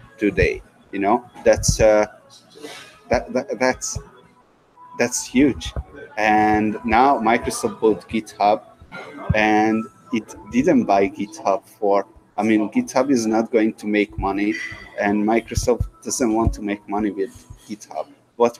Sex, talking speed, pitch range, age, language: male, 125 wpm, 105-130 Hz, 30-49, English